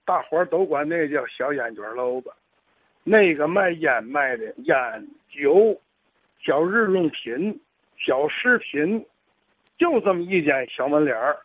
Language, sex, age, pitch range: Chinese, male, 60-79, 155-245 Hz